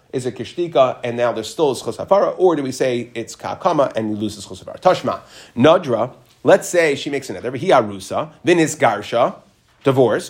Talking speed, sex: 170 wpm, male